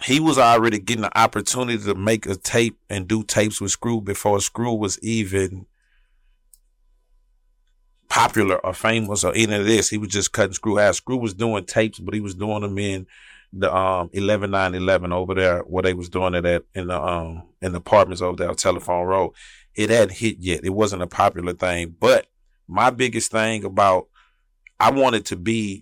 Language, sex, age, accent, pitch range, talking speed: English, male, 30-49, American, 95-115 Hz, 195 wpm